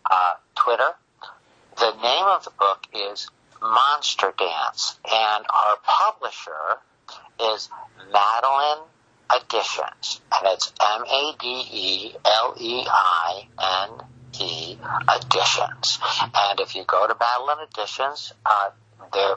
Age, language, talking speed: 60-79, English, 110 wpm